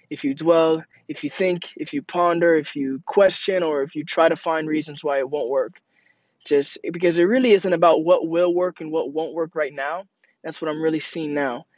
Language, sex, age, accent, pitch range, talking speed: English, male, 20-39, American, 155-205 Hz, 225 wpm